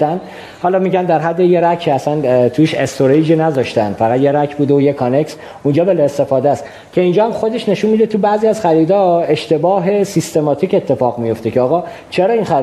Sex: male